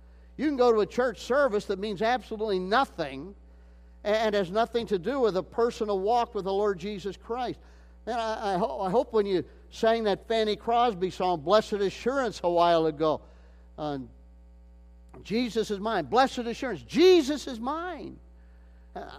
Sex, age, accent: male, 50-69, American